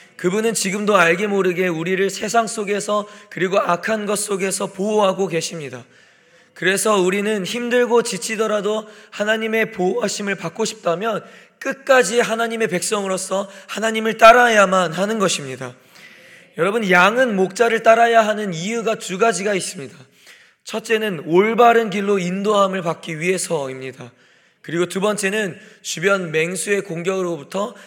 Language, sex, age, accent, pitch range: Korean, male, 20-39, native, 175-215 Hz